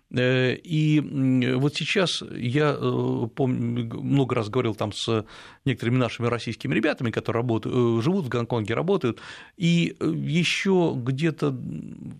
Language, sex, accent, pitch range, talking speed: Russian, male, native, 120-155 Hz, 115 wpm